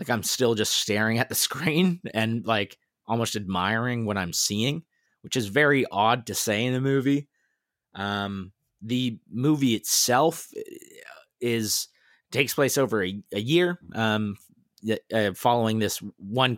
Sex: male